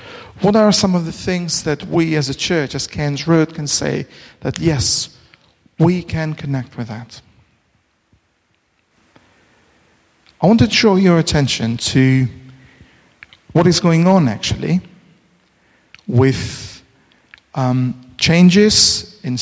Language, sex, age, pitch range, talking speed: English, male, 40-59, 130-185 Hz, 120 wpm